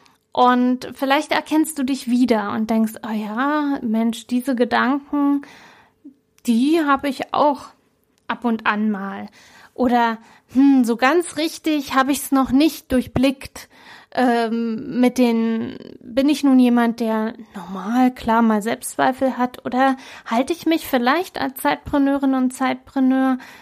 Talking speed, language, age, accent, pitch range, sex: 135 wpm, German, 20-39, German, 235-280 Hz, female